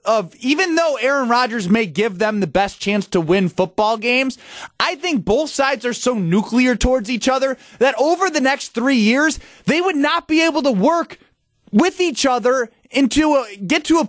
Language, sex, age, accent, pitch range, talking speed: English, male, 20-39, American, 225-295 Hz, 195 wpm